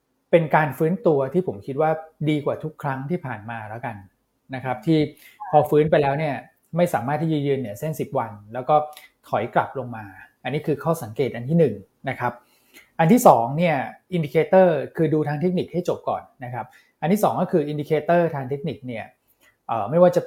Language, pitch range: Thai, 130-165 Hz